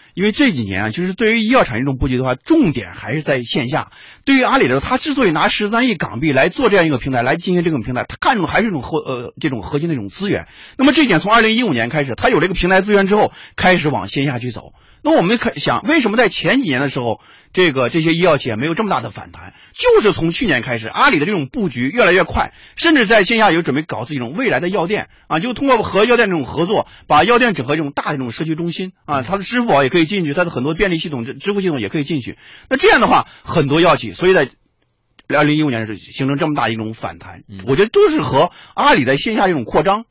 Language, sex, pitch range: Chinese, male, 125-195 Hz